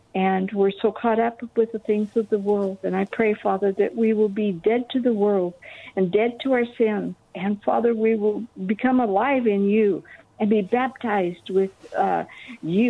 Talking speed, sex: 195 wpm, female